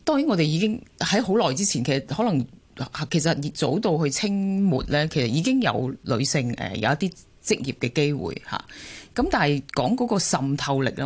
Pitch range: 130-180 Hz